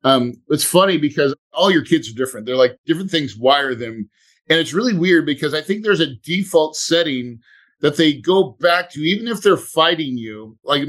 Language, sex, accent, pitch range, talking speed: English, male, American, 135-180 Hz, 205 wpm